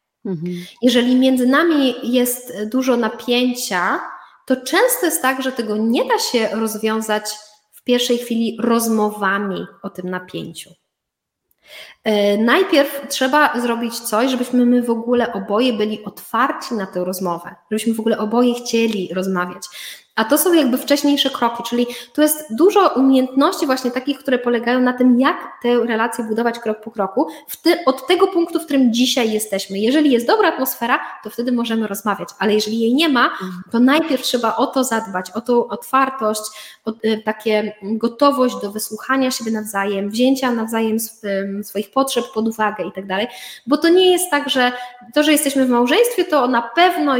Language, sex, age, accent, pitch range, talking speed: Polish, female, 20-39, native, 215-260 Hz, 165 wpm